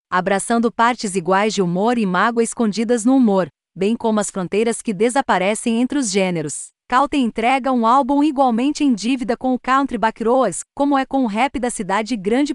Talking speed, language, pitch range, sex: 180 wpm, Portuguese, 220-270 Hz, female